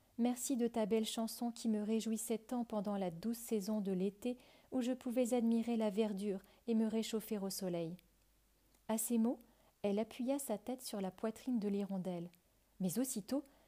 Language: French